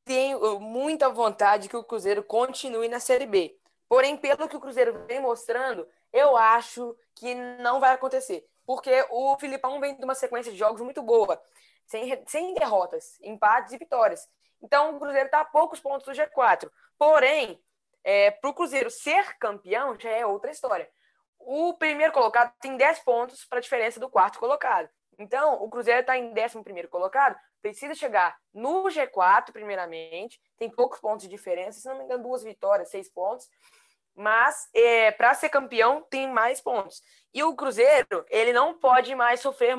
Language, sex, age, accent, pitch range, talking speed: Portuguese, female, 10-29, Brazilian, 230-290 Hz, 170 wpm